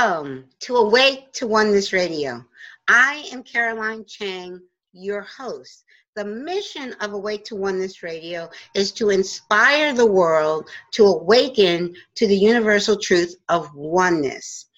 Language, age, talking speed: English, 50-69, 130 wpm